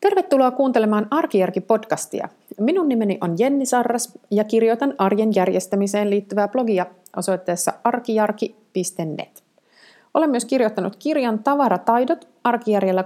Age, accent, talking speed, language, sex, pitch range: 30-49, native, 100 wpm, Finnish, female, 175-230 Hz